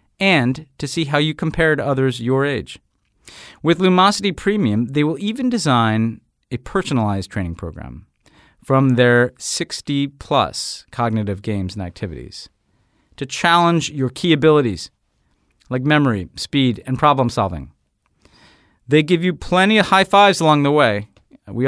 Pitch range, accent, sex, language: 105-160 Hz, American, male, English